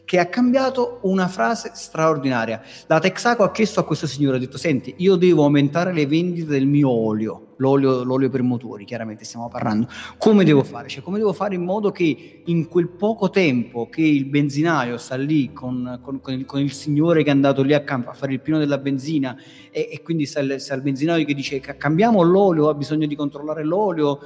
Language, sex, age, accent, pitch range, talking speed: Italian, male, 30-49, native, 130-180 Hz, 215 wpm